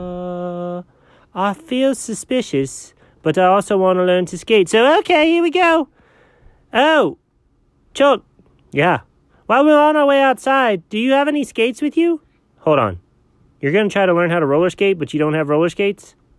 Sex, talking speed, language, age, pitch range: male, 185 wpm, English, 30-49, 125-200 Hz